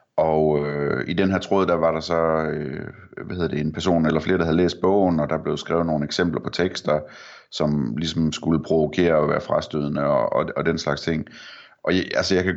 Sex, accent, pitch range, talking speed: male, native, 75-90 Hz, 235 wpm